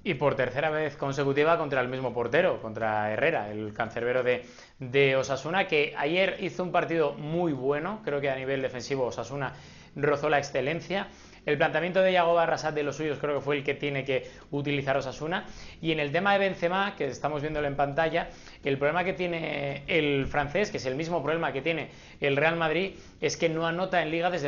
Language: Spanish